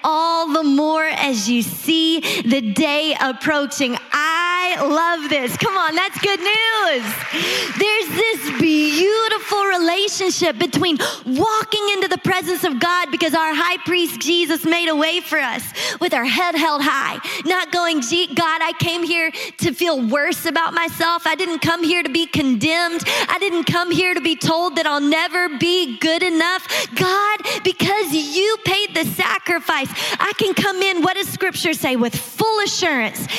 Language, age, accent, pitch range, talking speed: English, 20-39, American, 315-385 Hz, 165 wpm